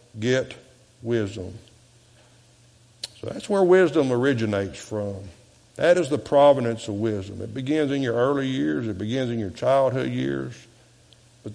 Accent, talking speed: American, 140 wpm